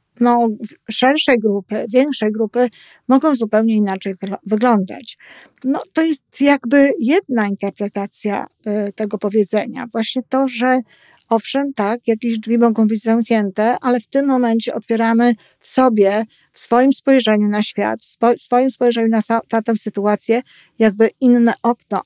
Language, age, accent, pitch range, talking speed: Polish, 50-69, native, 215-255 Hz, 145 wpm